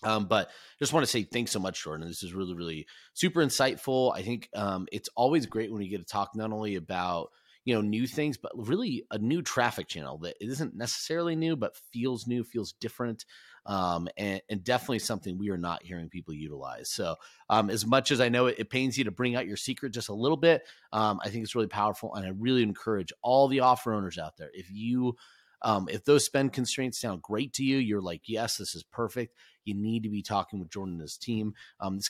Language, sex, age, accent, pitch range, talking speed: English, male, 30-49, American, 90-120 Hz, 235 wpm